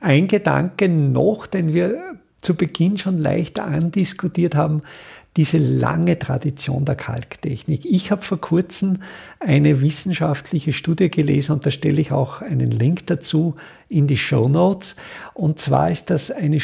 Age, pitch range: 50-69, 150-195 Hz